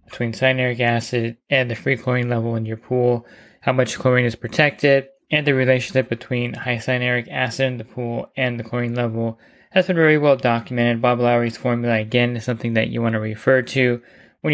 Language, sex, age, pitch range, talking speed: English, male, 20-39, 115-135 Hz, 200 wpm